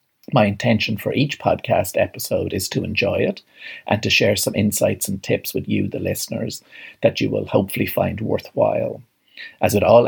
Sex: male